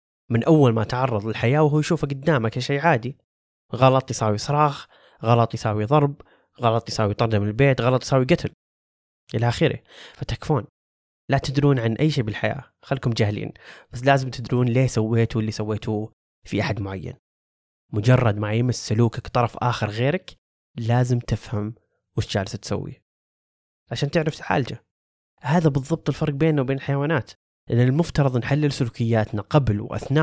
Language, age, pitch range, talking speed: Arabic, 20-39, 110-140 Hz, 140 wpm